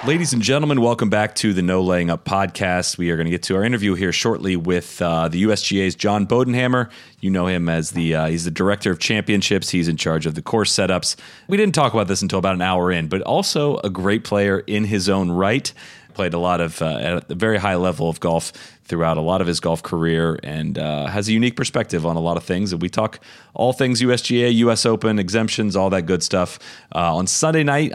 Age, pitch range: 30-49, 90-115 Hz